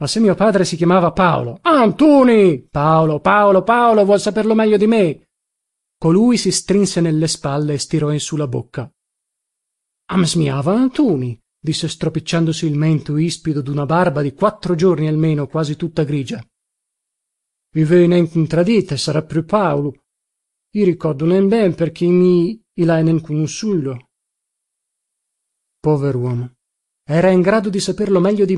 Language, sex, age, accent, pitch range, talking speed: Italian, male, 40-59, native, 150-195 Hz, 145 wpm